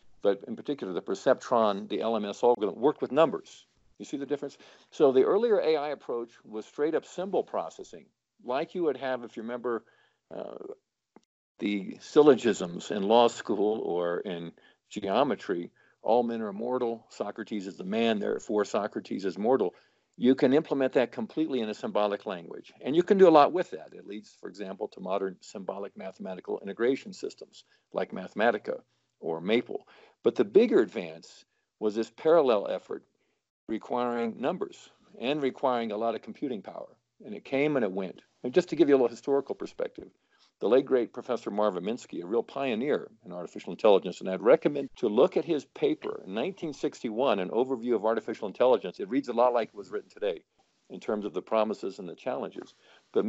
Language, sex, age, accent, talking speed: English, male, 50-69, American, 180 wpm